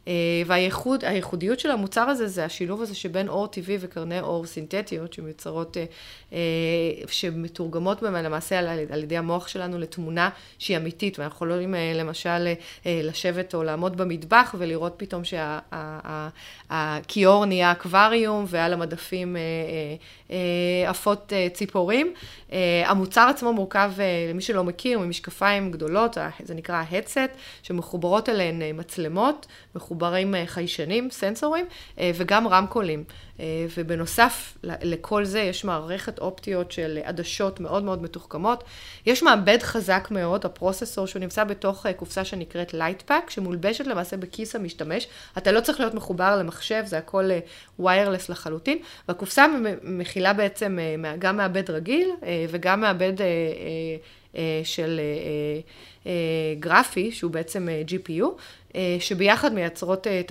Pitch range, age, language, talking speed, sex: 170-200 Hz, 30-49, Hebrew, 125 wpm, female